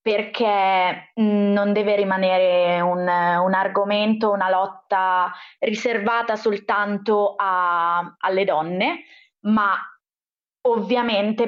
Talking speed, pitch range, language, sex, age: 80 wpm, 195-240 Hz, Italian, female, 20-39